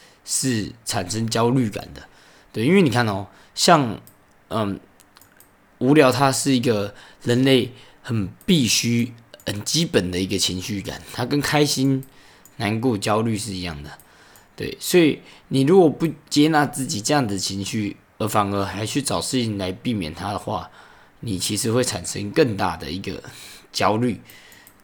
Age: 20-39